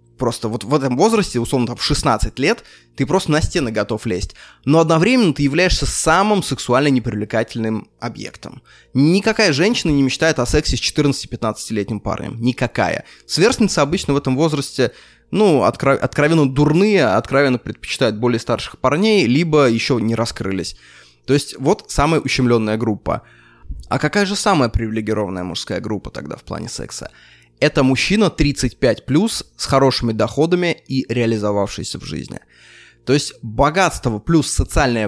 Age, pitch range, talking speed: 20-39, 115-150 Hz, 140 wpm